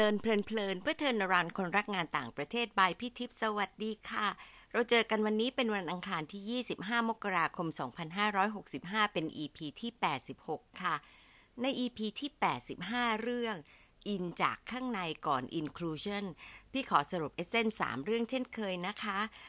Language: Thai